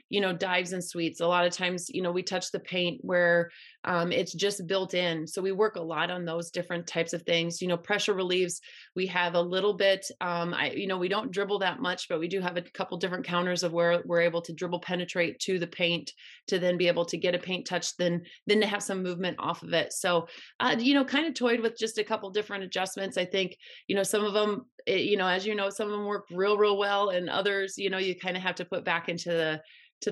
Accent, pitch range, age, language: American, 175-205 Hz, 30-49, English